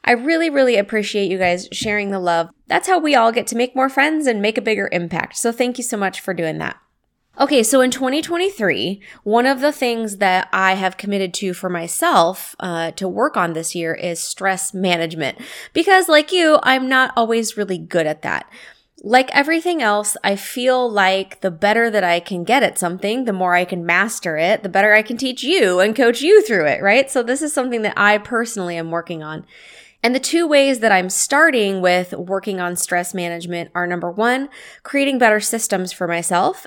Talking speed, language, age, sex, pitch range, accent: 210 wpm, English, 20-39, female, 180-245 Hz, American